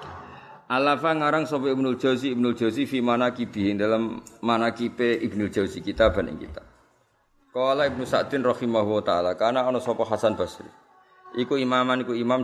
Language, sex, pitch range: Malay, male, 95-120 Hz